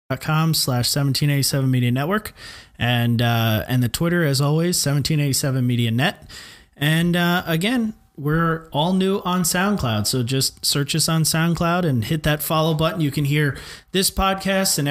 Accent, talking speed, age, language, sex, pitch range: American, 155 wpm, 30-49, English, male, 120-170 Hz